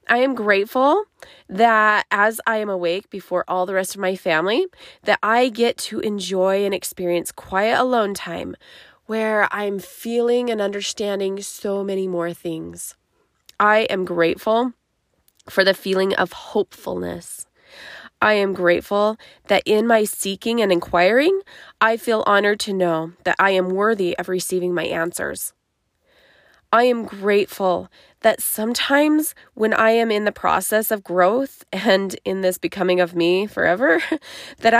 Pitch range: 185-225 Hz